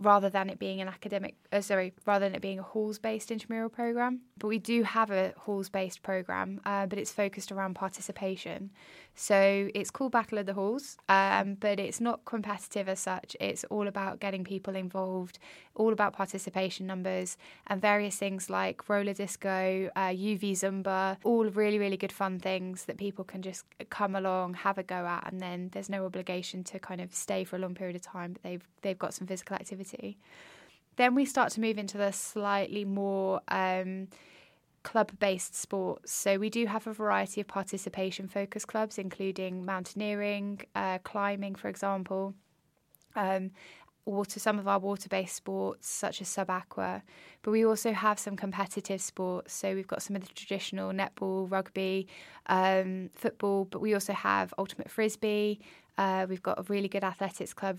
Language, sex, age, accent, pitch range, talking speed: English, female, 10-29, British, 190-205 Hz, 180 wpm